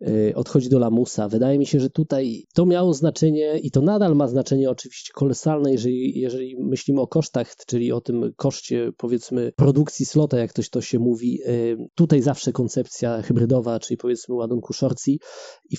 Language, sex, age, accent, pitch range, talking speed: Polish, male, 20-39, native, 125-145 Hz, 165 wpm